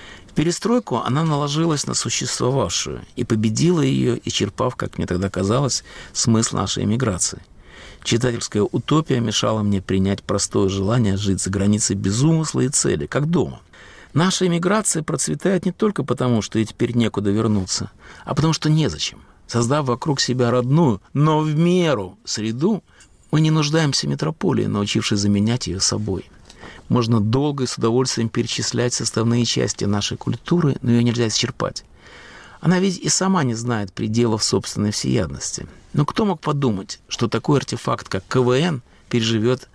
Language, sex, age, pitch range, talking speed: Russian, male, 50-69, 100-135 Hz, 150 wpm